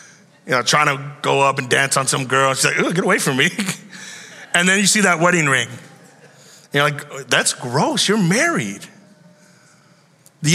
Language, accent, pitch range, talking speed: English, American, 130-175 Hz, 180 wpm